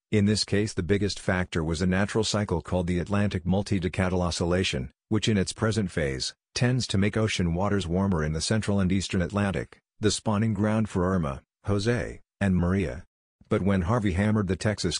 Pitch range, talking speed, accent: 90-105 Hz, 185 wpm, American